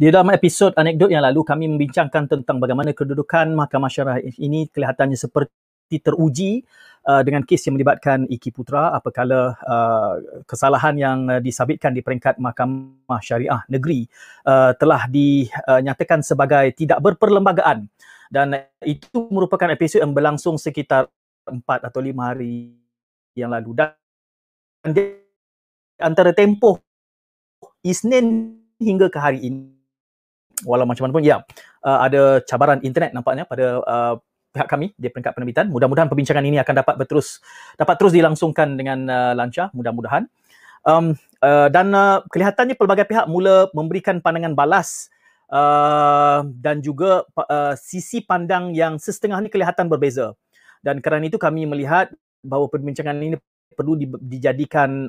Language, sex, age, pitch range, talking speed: Malay, male, 30-49, 135-170 Hz, 135 wpm